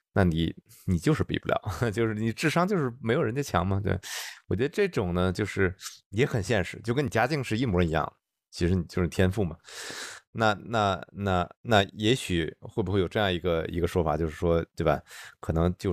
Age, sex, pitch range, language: 20-39, male, 90-115 Hz, Chinese